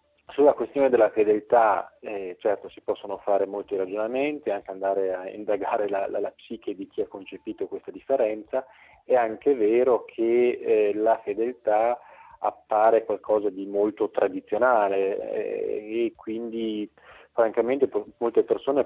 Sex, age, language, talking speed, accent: male, 30-49, Italian, 140 wpm, native